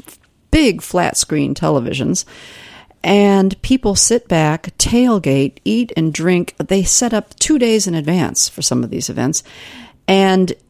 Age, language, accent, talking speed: 50-69, English, American, 140 wpm